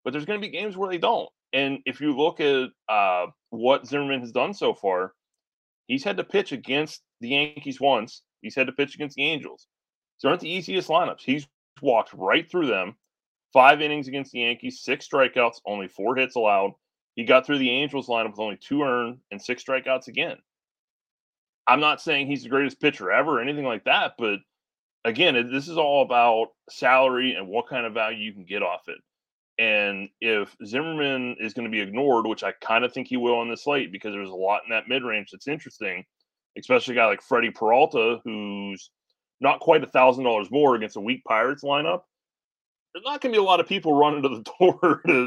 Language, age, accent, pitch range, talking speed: English, 30-49, American, 115-150 Hz, 215 wpm